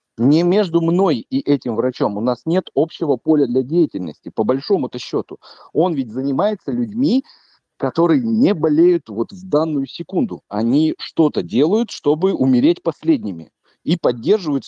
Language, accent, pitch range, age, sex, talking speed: Russian, native, 125-185 Hz, 40-59, male, 145 wpm